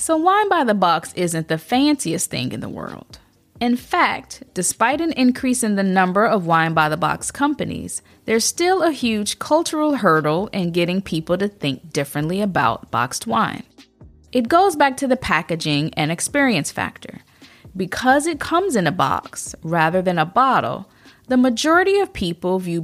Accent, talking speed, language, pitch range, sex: American, 155 wpm, English, 165-260 Hz, female